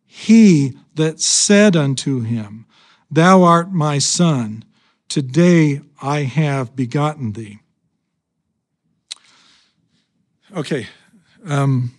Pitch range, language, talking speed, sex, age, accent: 130-160 Hz, English, 80 wpm, male, 50-69, American